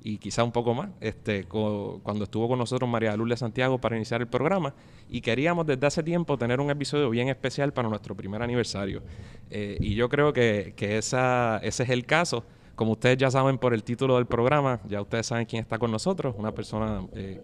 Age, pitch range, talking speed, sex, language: 30-49, 110-130 Hz, 215 wpm, male, Spanish